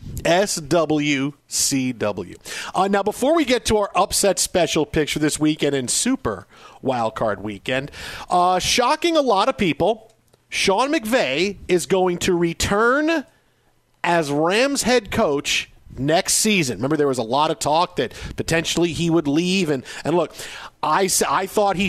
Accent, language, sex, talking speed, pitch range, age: American, English, male, 145 wpm, 155-195 Hz, 40-59